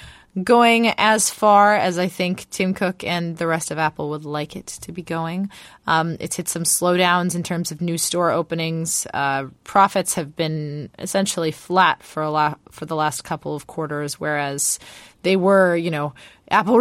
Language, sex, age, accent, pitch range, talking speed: English, female, 20-39, American, 160-215 Hz, 180 wpm